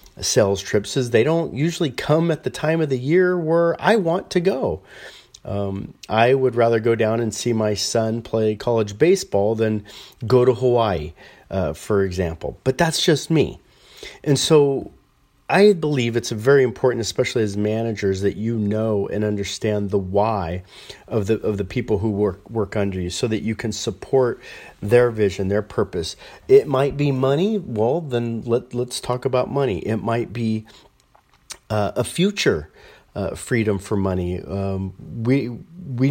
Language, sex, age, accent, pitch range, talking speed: English, male, 40-59, American, 105-145 Hz, 170 wpm